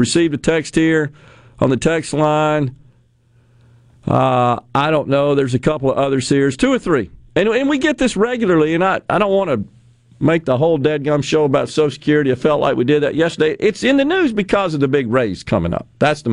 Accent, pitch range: American, 120-175 Hz